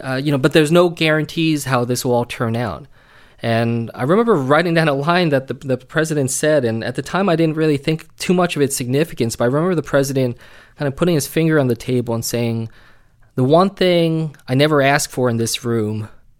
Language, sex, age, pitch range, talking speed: English, male, 20-39, 115-145 Hz, 230 wpm